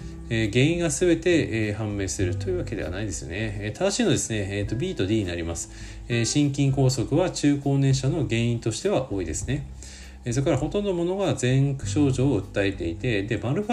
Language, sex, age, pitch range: Japanese, male, 40-59, 105-155 Hz